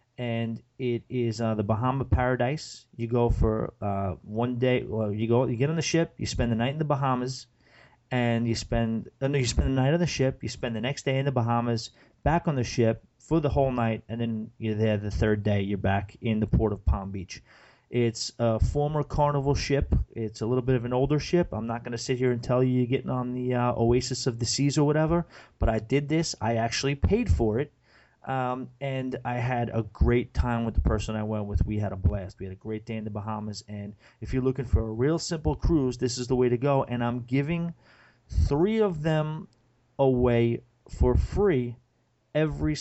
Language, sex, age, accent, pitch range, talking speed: English, male, 30-49, American, 115-135 Hz, 225 wpm